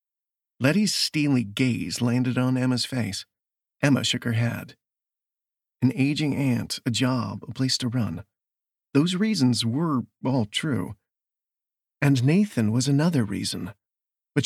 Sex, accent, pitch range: male, American, 115-140 Hz